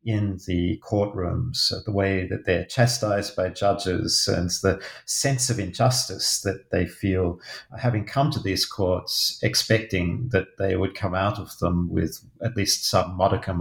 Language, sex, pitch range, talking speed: English, male, 95-120 Hz, 160 wpm